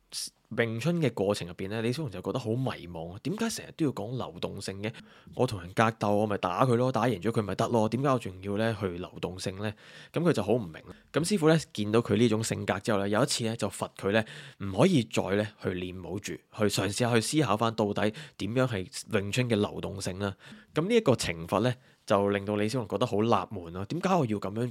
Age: 20-39